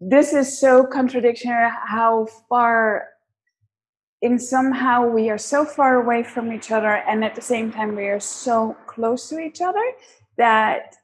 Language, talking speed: English, 160 wpm